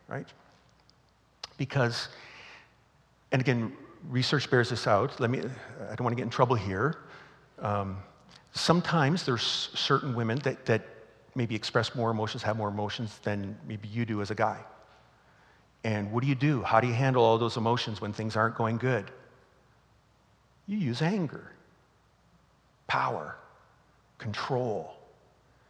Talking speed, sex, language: 140 wpm, male, English